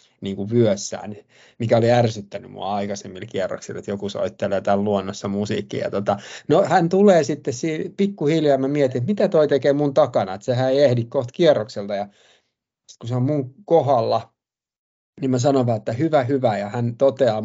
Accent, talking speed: native, 165 wpm